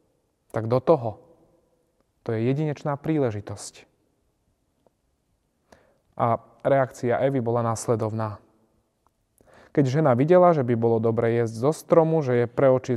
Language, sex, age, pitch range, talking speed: Slovak, male, 20-39, 115-145 Hz, 115 wpm